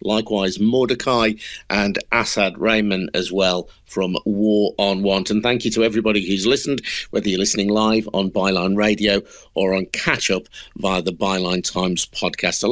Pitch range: 95-115 Hz